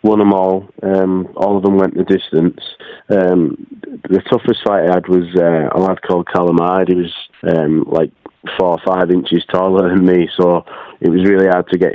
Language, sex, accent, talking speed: English, male, British, 205 wpm